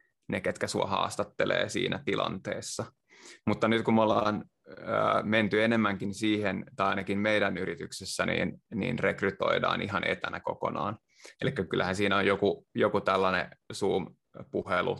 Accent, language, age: native, Finnish, 20-39